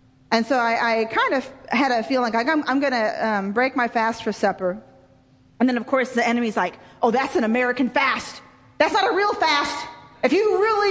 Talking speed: 215 wpm